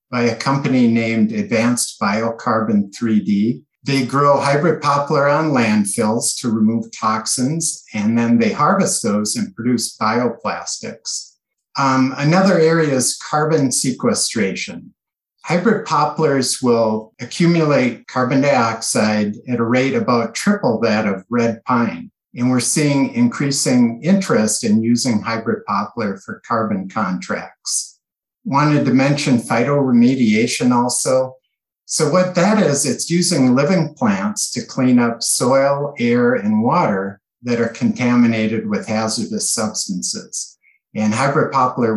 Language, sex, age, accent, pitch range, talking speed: English, male, 50-69, American, 115-190 Hz, 120 wpm